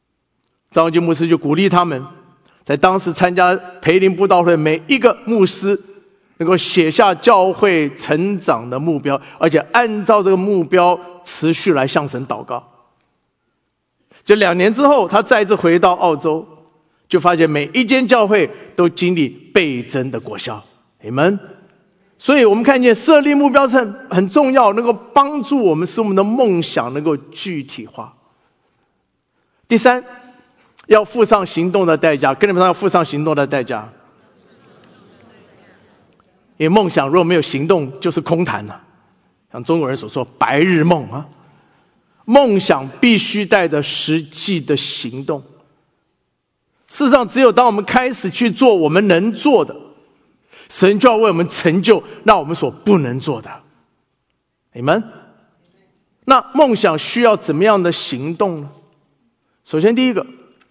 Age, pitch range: 50-69, 155-215 Hz